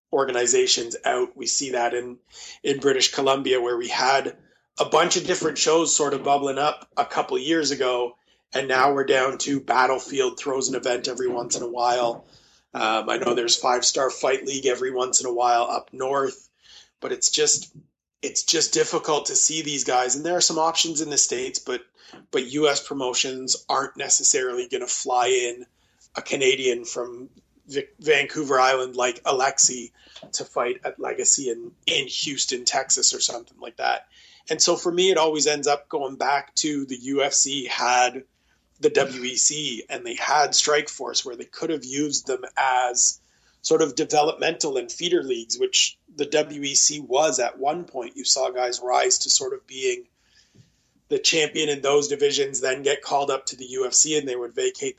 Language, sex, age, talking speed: English, male, 30-49, 180 wpm